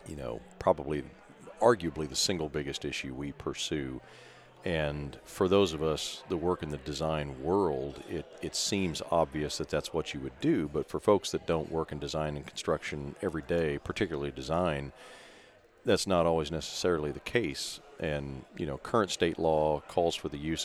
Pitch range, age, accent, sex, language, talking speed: 75-85 Hz, 40-59, American, male, English, 175 wpm